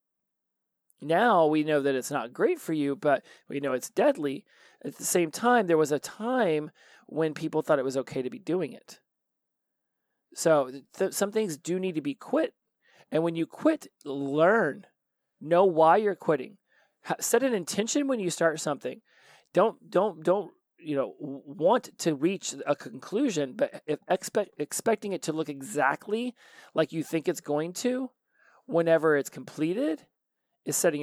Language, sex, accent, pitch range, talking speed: English, male, American, 150-210 Hz, 170 wpm